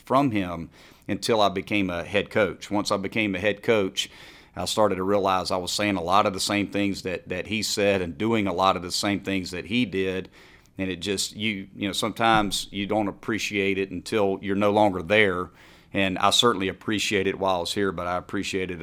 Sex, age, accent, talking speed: male, 40-59, American, 225 wpm